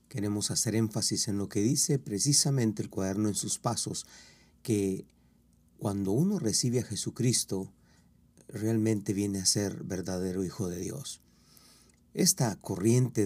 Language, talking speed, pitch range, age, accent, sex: Spanish, 130 wpm, 100-120 Hz, 40-59, Mexican, male